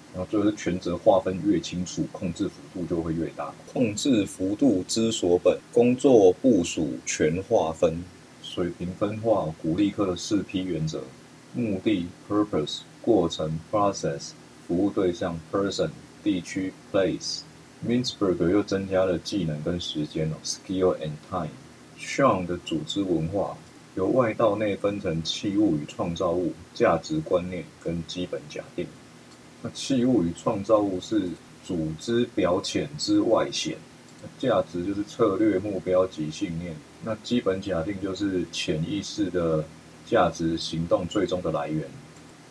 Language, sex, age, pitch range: Chinese, male, 30-49, 80-105 Hz